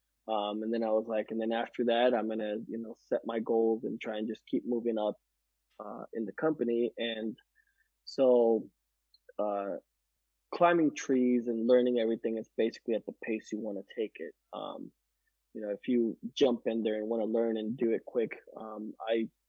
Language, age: English, 20-39